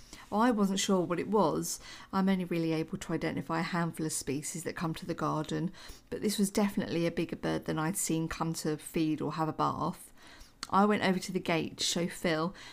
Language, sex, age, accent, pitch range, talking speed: English, female, 50-69, British, 165-200 Hz, 220 wpm